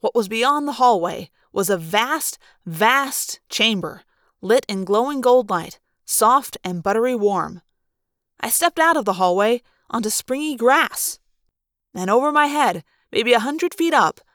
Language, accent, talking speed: English, American, 155 wpm